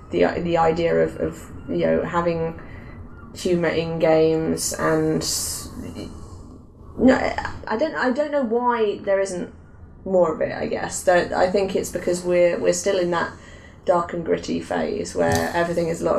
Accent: British